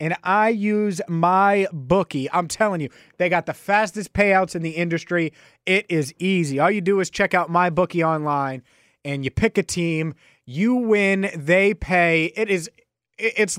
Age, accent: 30-49, American